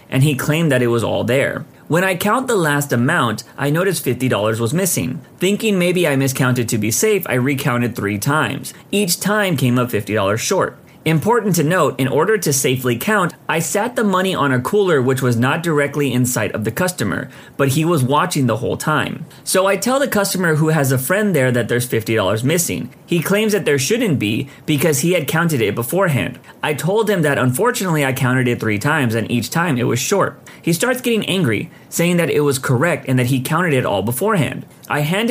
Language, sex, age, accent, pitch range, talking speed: English, male, 30-49, American, 130-180 Hz, 215 wpm